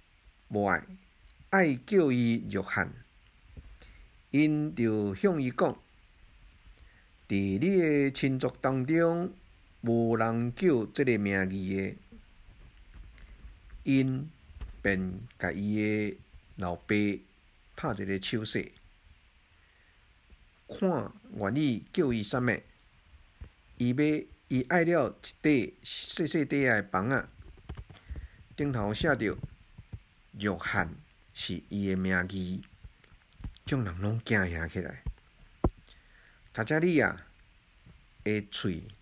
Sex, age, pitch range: male, 50-69, 90-130 Hz